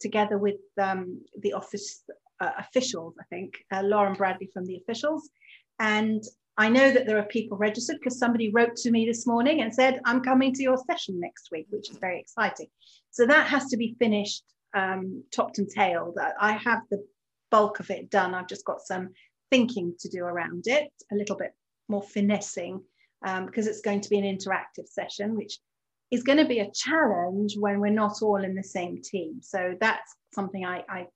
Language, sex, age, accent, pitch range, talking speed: English, female, 40-59, British, 195-240 Hz, 195 wpm